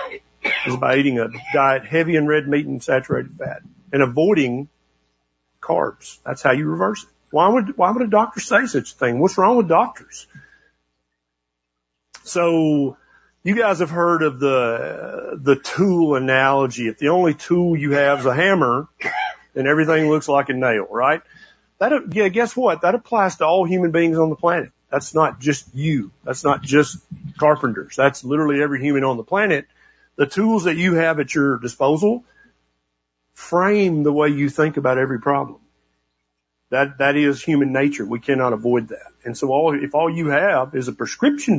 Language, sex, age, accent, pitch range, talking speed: English, male, 50-69, American, 130-180 Hz, 180 wpm